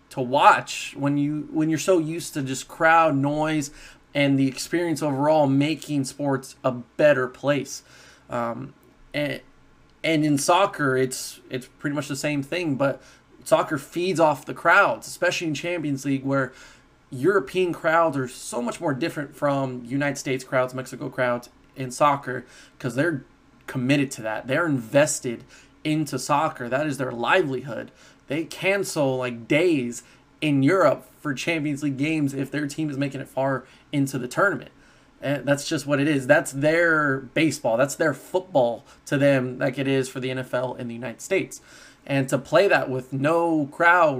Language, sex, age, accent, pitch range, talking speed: English, male, 20-39, American, 130-155 Hz, 165 wpm